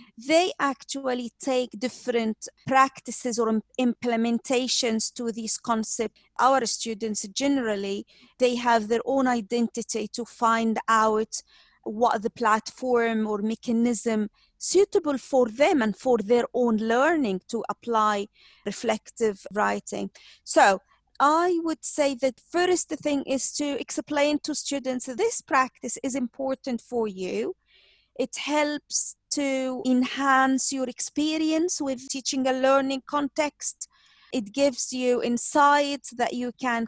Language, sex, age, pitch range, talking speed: English, female, 40-59, 230-275 Hz, 120 wpm